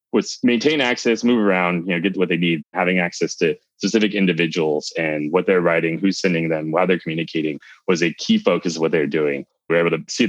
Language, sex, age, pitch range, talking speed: English, male, 20-39, 85-105 Hz, 225 wpm